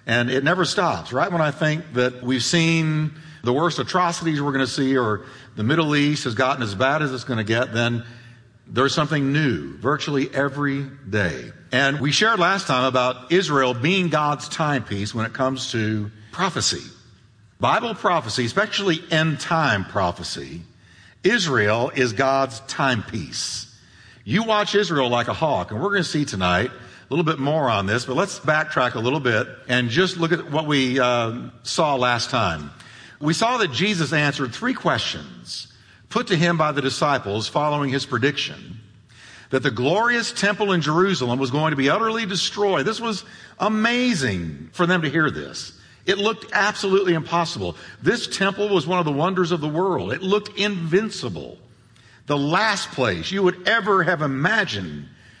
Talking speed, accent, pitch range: 170 wpm, American, 125-175 Hz